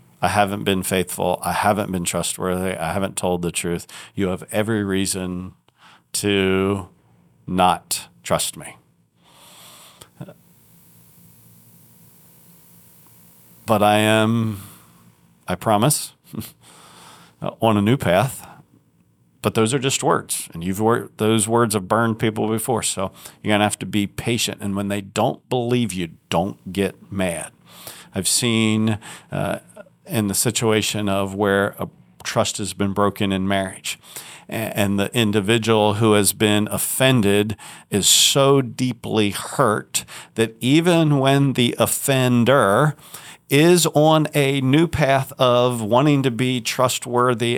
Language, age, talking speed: English, 40-59, 125 wpm